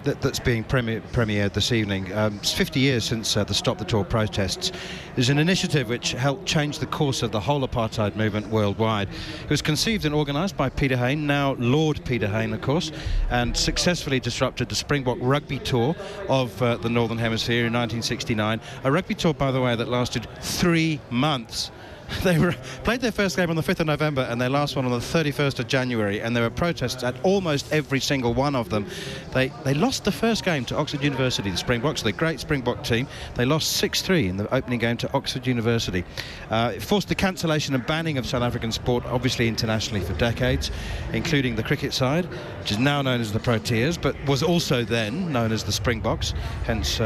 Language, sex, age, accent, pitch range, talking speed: English, male, 40-59, British, 115-150 Hz, 205 wpm